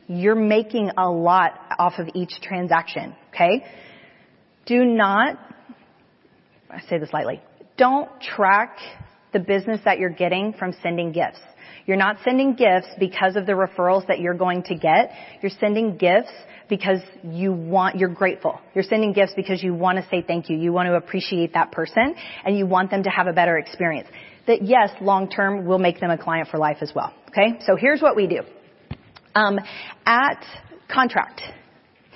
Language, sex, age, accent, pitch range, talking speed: English, female, 30-49, American, 180-210 Hz, 170 wpm